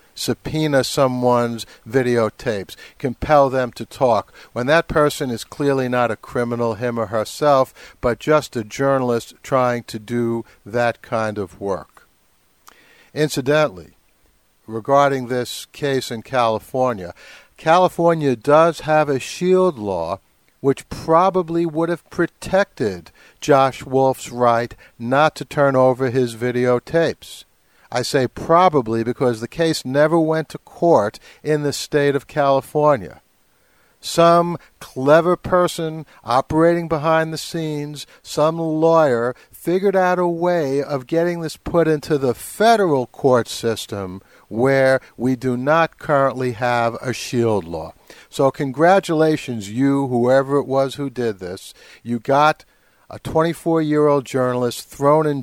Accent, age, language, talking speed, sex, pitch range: American, 60-79, English, 125 wpm, male, 120-155 Hz